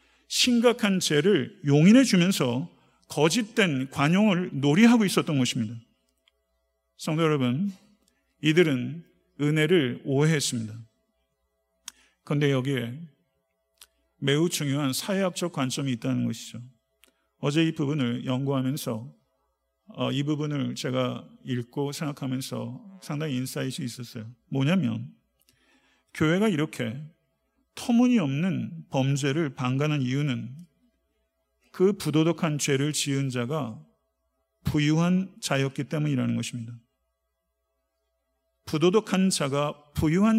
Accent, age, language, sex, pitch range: native, 50-69, Korean, male, 120-175 Hz